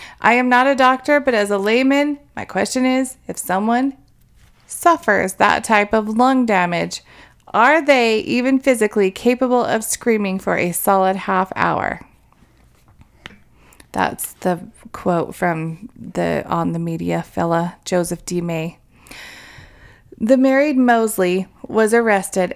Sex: female